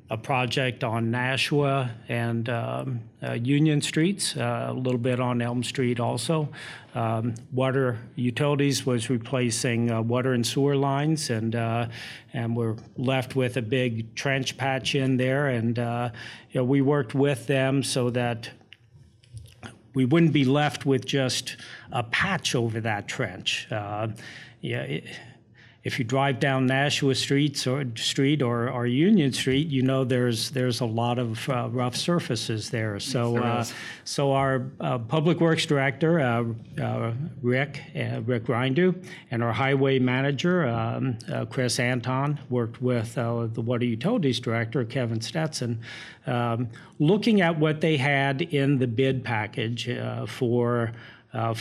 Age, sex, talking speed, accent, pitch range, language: 50-69, male, 150 wpm, American, 120-140 Hz, English